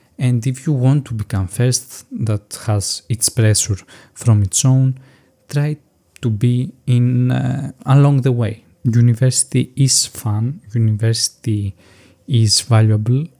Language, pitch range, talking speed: Greek, 110-130 Hz, 125 wpm